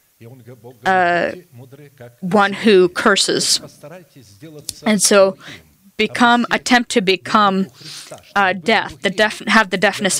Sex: female